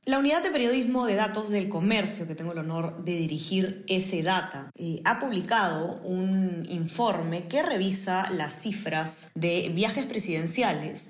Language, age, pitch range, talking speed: Spanish, 20-39, 165-205 Hz, 145 wpm